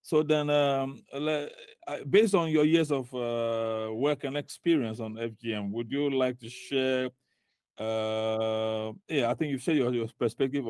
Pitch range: 115-140 Hz